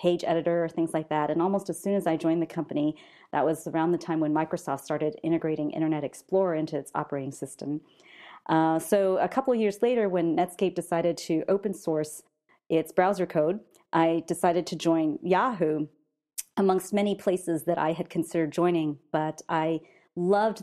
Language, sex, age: English, female, 40-59